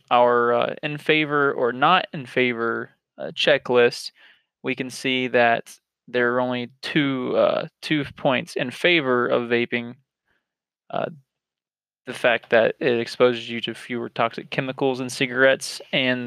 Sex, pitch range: male, 125-140 Hz